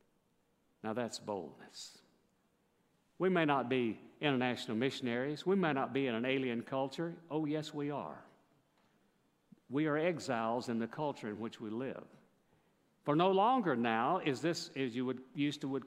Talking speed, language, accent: 160 wpm, English, American